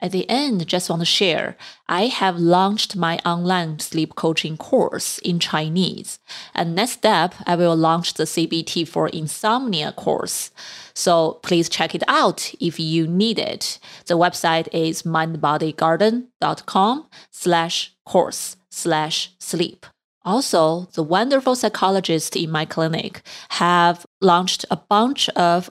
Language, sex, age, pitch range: English, female, 30-49, 170-205 Hz